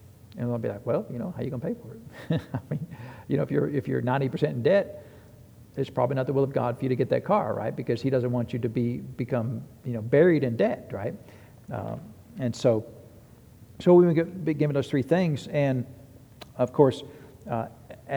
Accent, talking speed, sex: American, 225 wpm, male